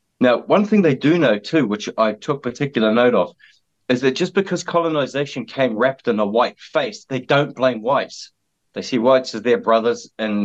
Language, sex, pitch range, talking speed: English, male, 100-130 Hz, 200 wpm